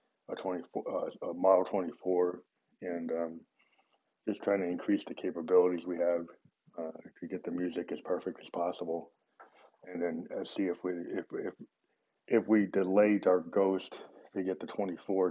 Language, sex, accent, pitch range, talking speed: English, male, American, 85-95 Hz, 165 wpm